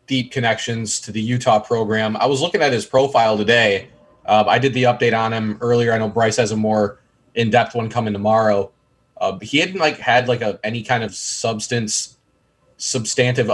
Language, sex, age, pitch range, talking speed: English, male, 20-39, 110-130 Hz, 195 wpm